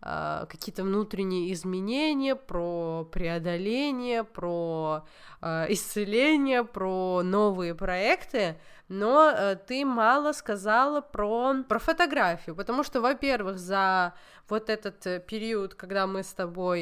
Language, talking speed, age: Russian, 105 wpm, 20-39